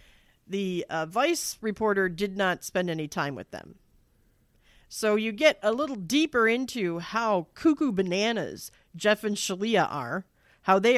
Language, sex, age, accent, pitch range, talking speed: English, female, 40-59, American, 170-220 Hz, 150 wpm